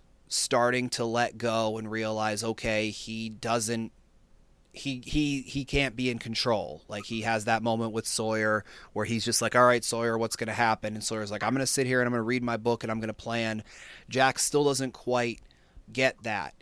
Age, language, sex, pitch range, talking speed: 30-49, English, male, 110-120 Hz, 215 wpm